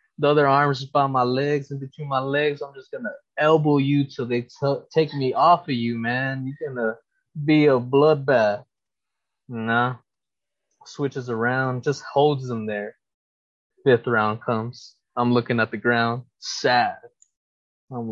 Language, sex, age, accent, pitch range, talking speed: English, male, 20-39, American, 125-160 Hz, 160 wpm